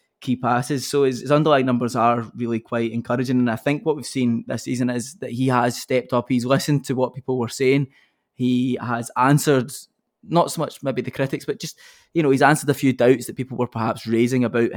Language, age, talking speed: English, 20-39, 230 wpm